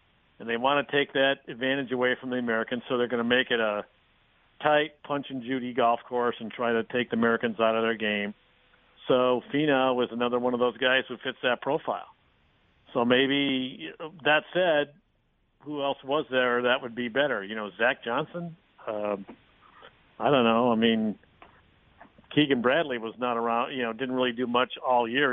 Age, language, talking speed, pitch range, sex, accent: 50-69, English, 190 wpm, 120-145 Hz, male, American